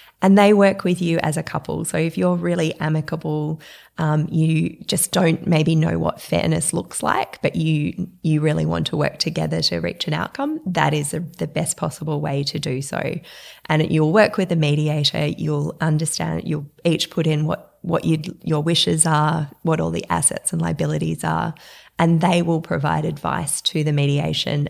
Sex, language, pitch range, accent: female, English, 140-170 Hz, Australian